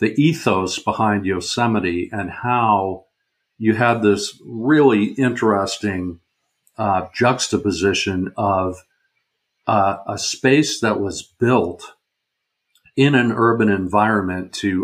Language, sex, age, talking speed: English, male, 50-69, 100 wpm